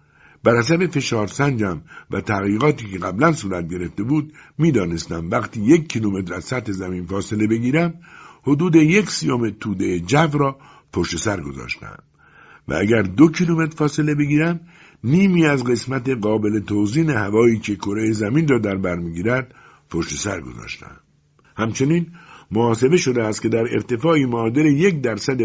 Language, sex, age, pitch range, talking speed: Persian, male, 60-79, 105-155 Hz, 140 wpm